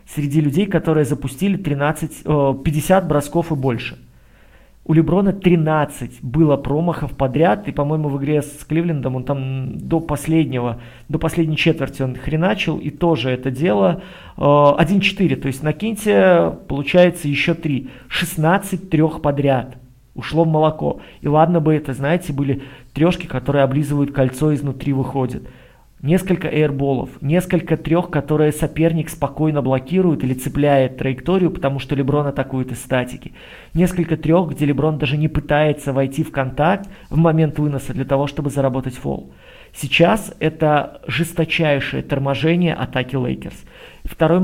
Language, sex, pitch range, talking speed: Russian, male, 135-165 Hz, 140 wpm